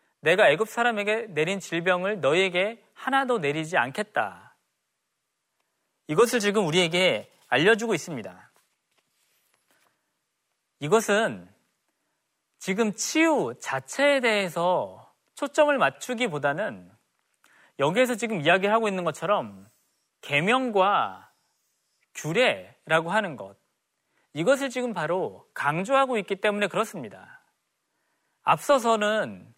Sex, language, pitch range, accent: male, Korean, 175-240 Hz, native